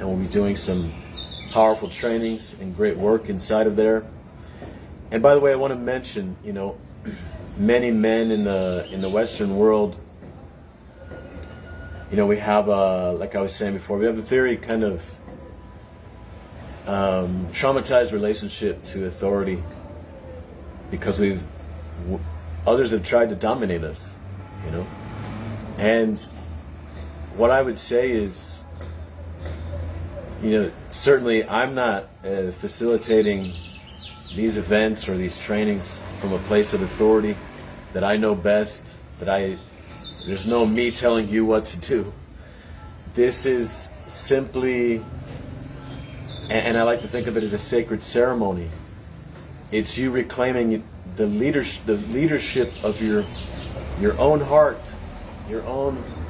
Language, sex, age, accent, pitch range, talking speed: English, male, 40-59, American, 85-110 Hz, 135 wpm